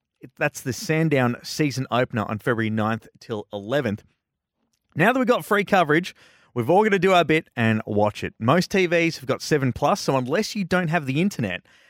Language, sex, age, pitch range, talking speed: English, male, 30-49, 110-175 Hz, 195 wpm